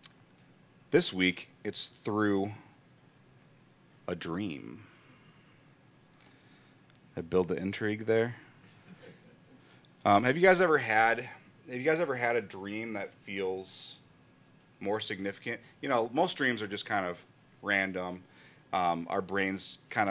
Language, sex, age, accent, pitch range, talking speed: English, male, 30-49, American, 100-120 Hz, 120 wpm